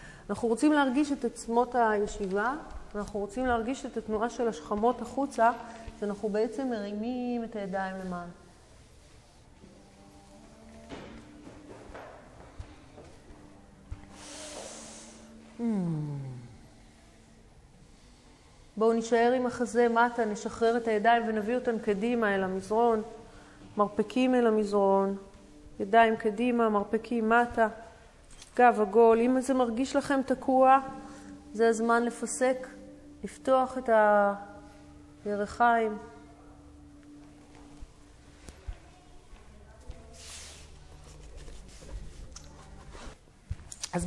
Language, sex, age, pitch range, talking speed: Hebrew, female, 30-49, 145-240 Hz, 75 wpm